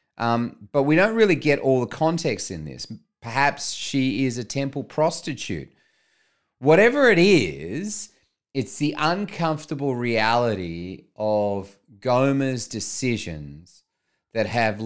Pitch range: 95-125 Hz